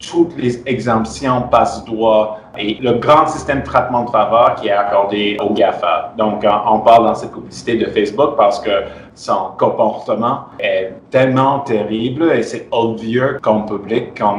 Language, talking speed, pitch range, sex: French, 160 wpm, 110-130 Hz, male